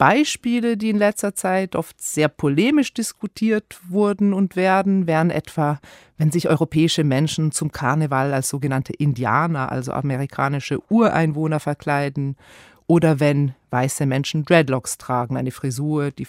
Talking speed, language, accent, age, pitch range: 135 wpm, German, German, 40-59, 140-205 Hz